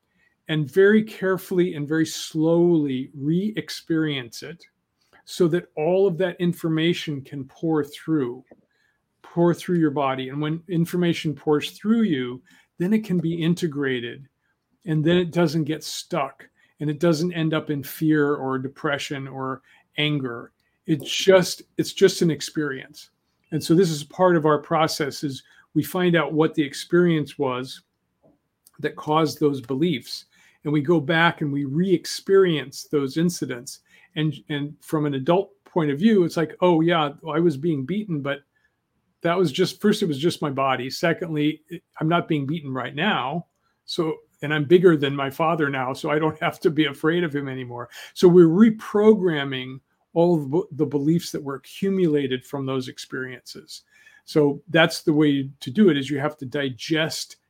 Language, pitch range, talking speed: English, 140-175 Hz, 165 wpm